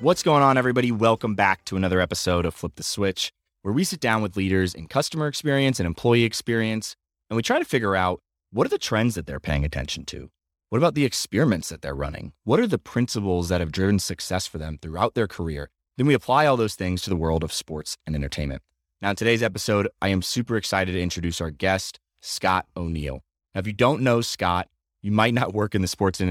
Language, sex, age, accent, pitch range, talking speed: English, male, 30-49, American, 85-110 Hz, 230 wpm